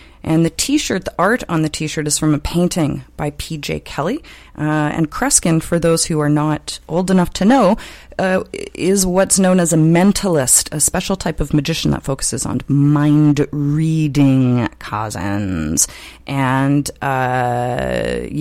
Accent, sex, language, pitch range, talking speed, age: American, female, English, 145-175 Hz, 150 wpm, 30-49